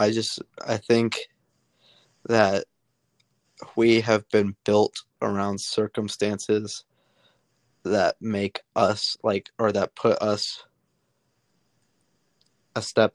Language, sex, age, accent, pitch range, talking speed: English, male, 20-39, American, 100-110 Hz, 95 wpm